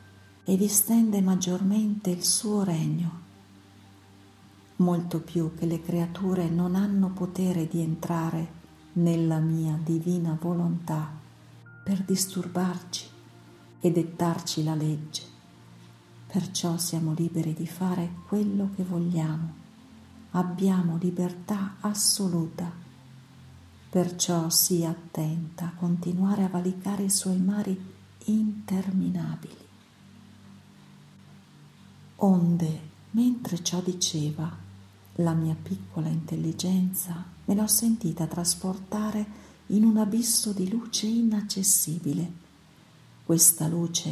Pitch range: 160-190 Hz